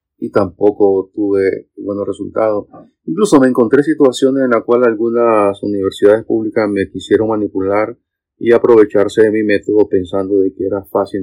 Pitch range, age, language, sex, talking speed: 100-115 Hz, 40-59, Spanish, male, 150 wpm